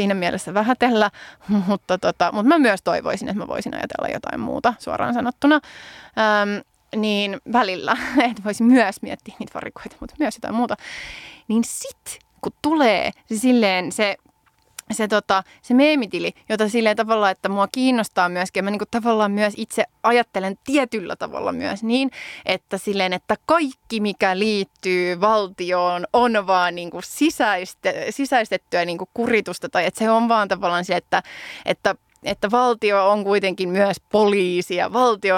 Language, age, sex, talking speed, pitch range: Finnish, 20-39, female, 155 wpm, 185-230 Hz